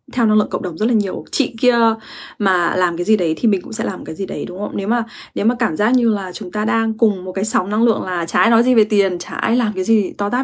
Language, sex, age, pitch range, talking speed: English, female, 10-29, 195-235 Hz, 320 wpm